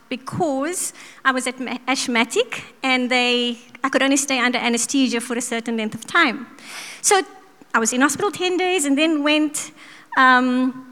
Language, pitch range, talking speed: English, 240-290 Hz, 160 wpm